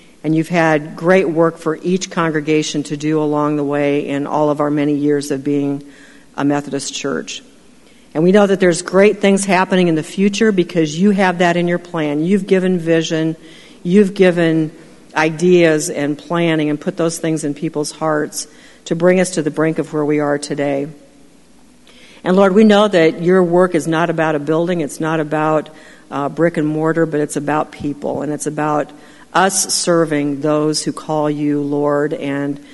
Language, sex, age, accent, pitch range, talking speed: English, female, 50-69, American, 150-175 Hz, 185 wpm